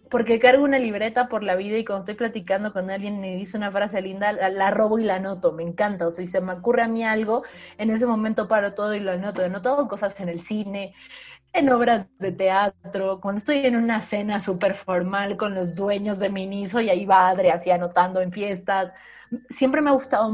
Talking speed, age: 230 wpm, 30-49